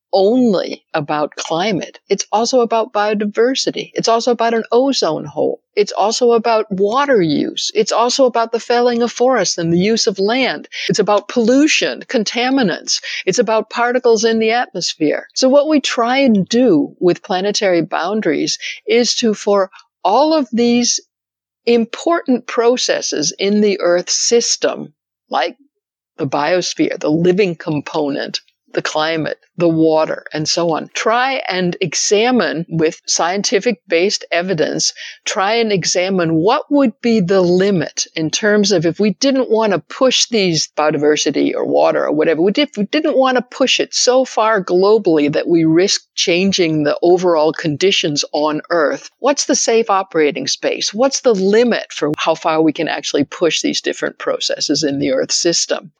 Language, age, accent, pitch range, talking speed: English, 60-79, American, 170-240 Hz, 155 wpm